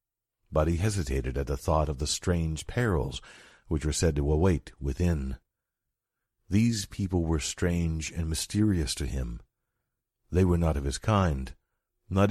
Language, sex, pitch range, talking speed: English, male, 80-110 Hz, 150 wpm